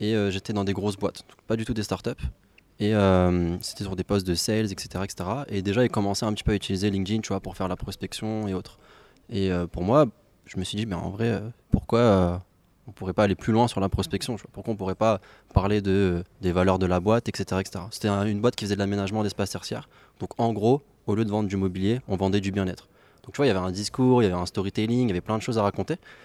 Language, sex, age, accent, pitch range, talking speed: French, male, 20-39, French, 95-110 Hz, 280 wpm